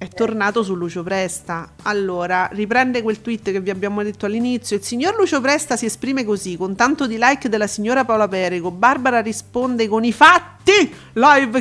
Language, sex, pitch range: Italian, female, 190-255 Hz